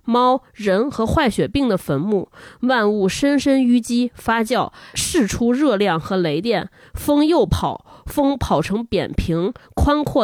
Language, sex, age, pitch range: Chinese, female, 20-39, 195-270 Hz